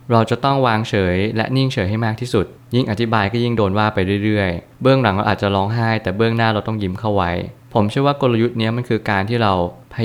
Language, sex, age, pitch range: Thai, male, 20-39, 95-120 Hz